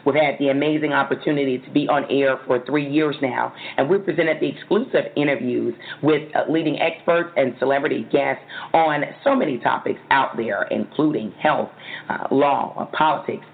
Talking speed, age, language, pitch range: 160 wpm, 40-59, English, 130-155 Hz